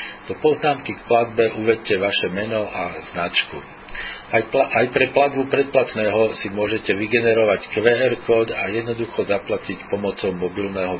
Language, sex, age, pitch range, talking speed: Slovak, male, 40-59, 100-115 Hz, 135 wpm